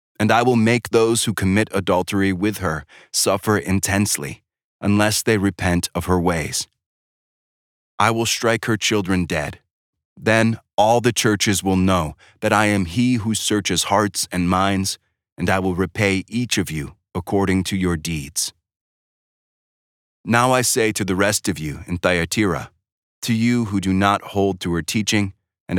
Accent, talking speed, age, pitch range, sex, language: American, 165 wpm, 30-49, 90-105 Hz, male, English